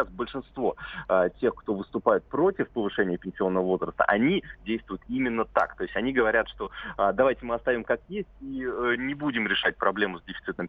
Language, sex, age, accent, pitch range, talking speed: Russian, male, 30-49, native, 100-125 Hz, 165 wpm